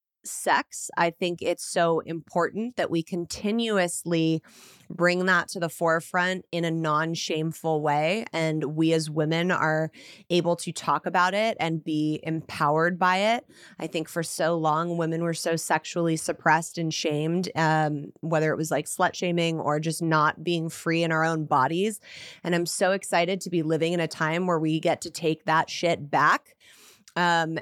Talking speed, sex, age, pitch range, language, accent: 175 wpm, female, 20-39, 160-180 Hz, English, American